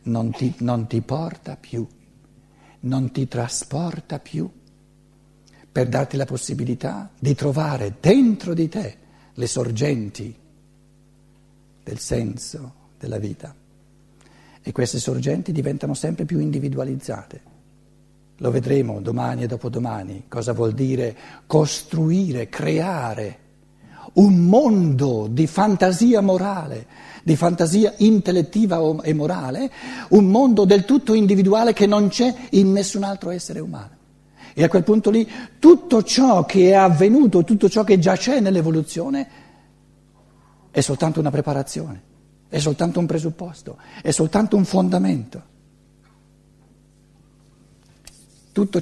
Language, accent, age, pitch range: Italian, native, 60-79, 135-200 Hz